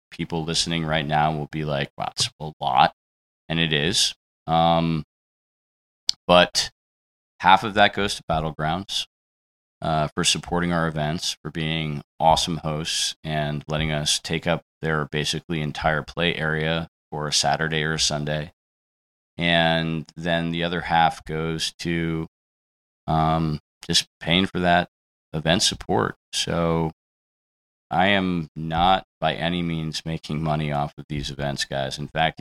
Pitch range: 75-85 Hz